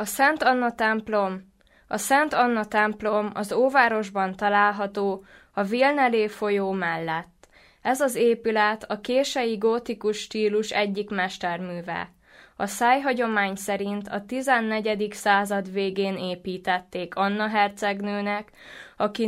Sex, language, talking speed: female, Czech, 110 wpm